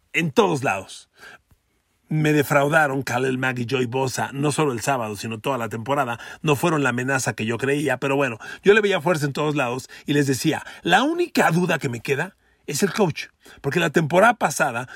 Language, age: Spanish, 40-59